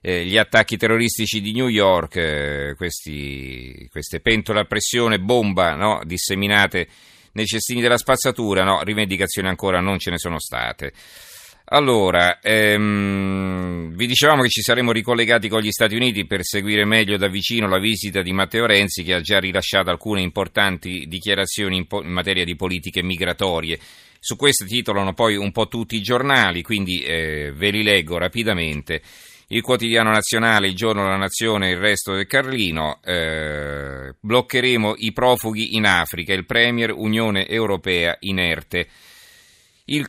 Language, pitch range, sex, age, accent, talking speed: Italian, 90-110 Hz, male, 40-59, native, 155 wpm